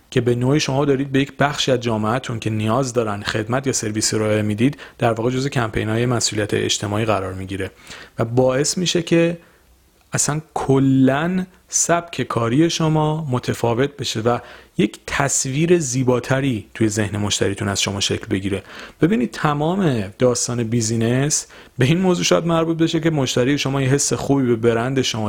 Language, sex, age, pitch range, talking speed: Persian, male, 40-59, 110-150 Hz, 165 wpm